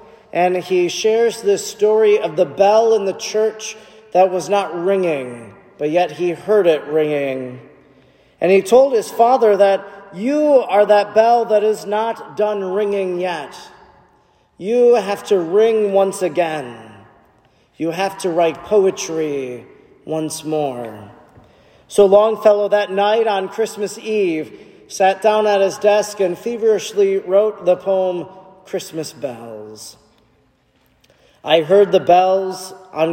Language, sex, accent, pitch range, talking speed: English, male, American, 170-215 Hz, 135 wpm